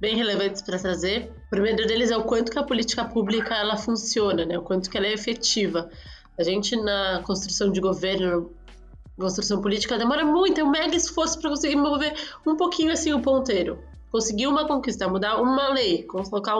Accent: Brazilian